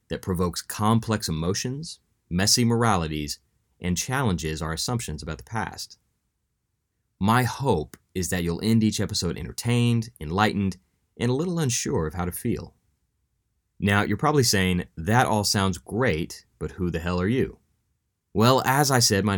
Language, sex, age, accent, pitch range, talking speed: English, male, 30-49, American, 85-110 Hz, 155 wpm